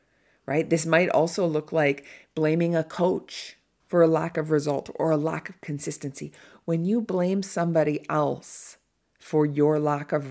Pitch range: 145-180 Hz